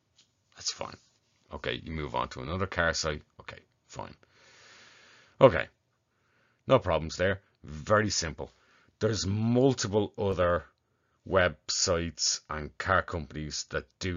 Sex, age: male, 30-49